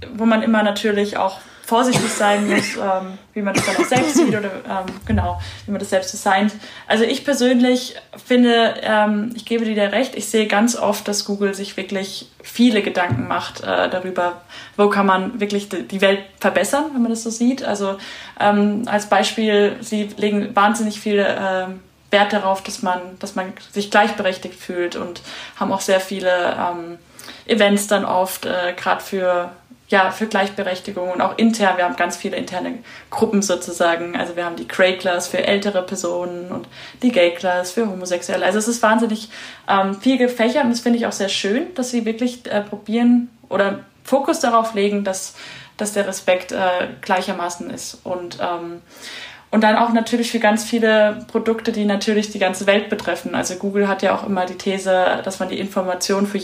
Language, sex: German, female